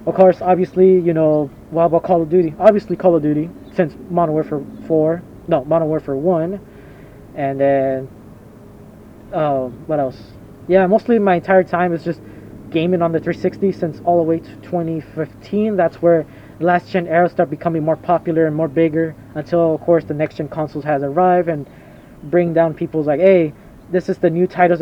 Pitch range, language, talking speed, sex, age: 150-180 Hz, English, 180 wpm, male, 20-39